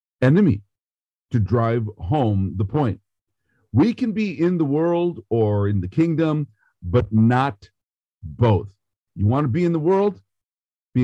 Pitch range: 100-125 Hz